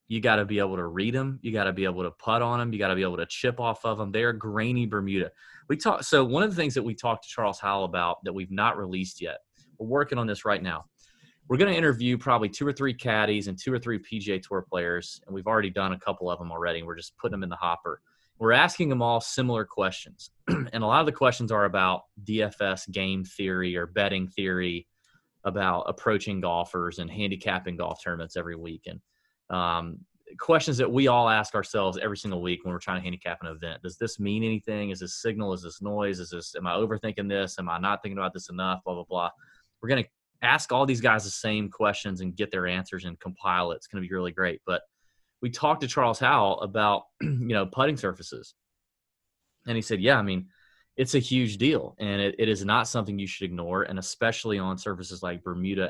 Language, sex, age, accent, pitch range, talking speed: English, male, 30-49, American, 90-115 Hz, 230 wpm